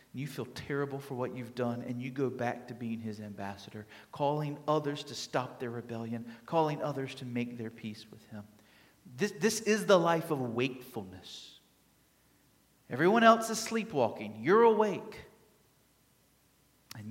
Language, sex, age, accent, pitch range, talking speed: English, male, 40-59, American, 130-215 Hz, 150 wpm